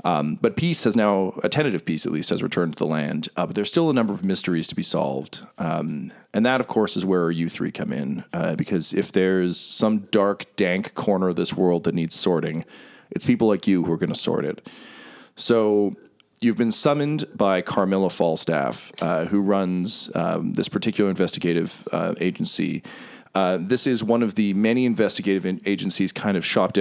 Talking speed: 200 wpm